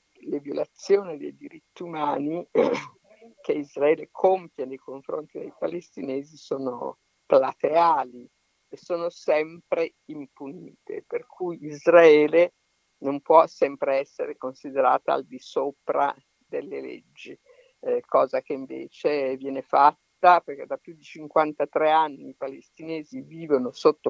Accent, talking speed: native, 115 wpm